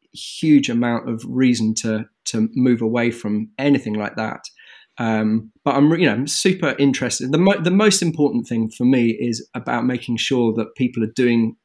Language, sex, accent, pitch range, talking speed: English, male, British, 110-140 Hz, 185 wpm